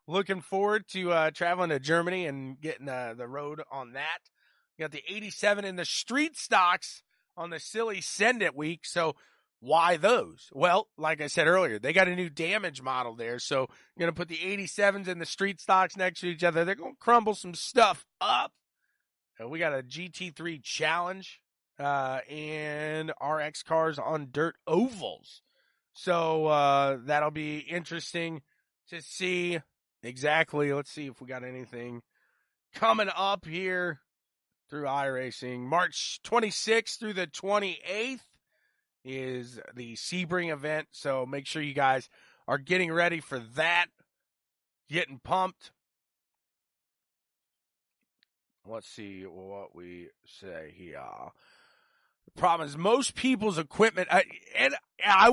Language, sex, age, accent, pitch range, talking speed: English, male, 30-49, American, 140-185 Hz, 140 wpm